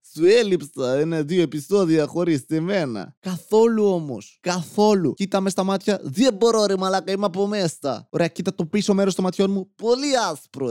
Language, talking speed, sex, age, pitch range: Greek, 170 wpm, male, 20-39, 140-185 Hz